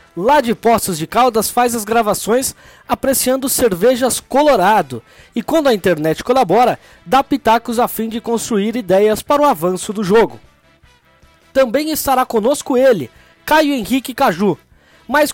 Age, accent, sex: 20-39, Brazilian, male